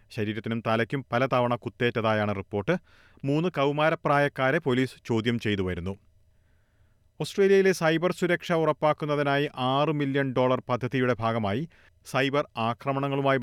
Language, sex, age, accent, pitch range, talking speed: Malayalam, male, 30-49, native, 105-140 Hz, 100 wpm